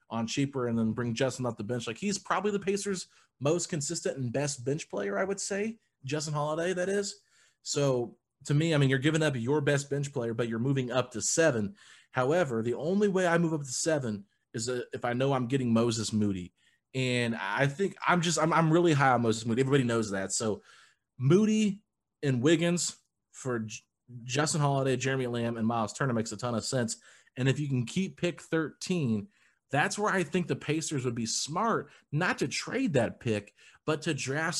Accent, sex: American, male